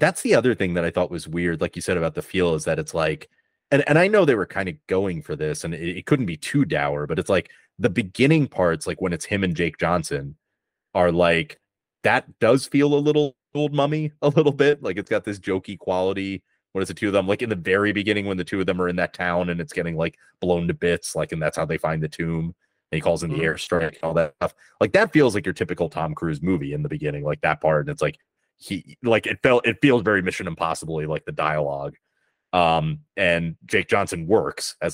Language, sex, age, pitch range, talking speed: English, male, 30-49, 85-110 Hz, 255 wpm